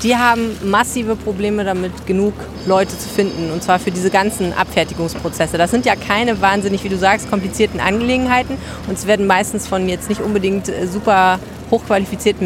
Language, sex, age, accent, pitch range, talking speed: German, female, 30-49, German, 185-220 Hz, 170 wpm